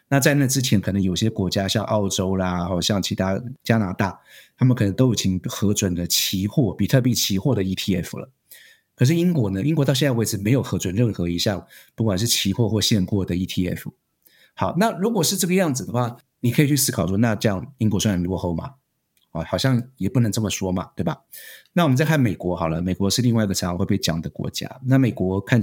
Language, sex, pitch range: Chinese, male, 95-125 Hz